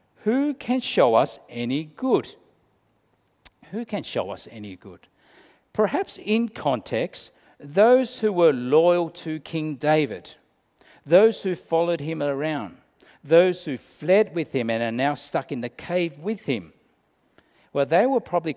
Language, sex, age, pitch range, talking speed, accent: English, male, 50-69, 140-215 Hz, 145 wpm, Australian